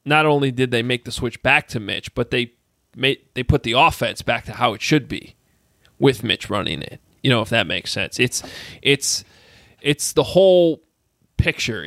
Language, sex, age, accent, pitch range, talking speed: English, male, 20-39, American, 120-160 Hz, 195 wpm